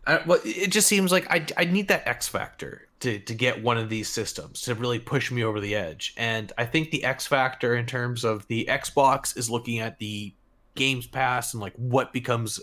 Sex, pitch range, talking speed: male, 115-140 Hz, 225 wpm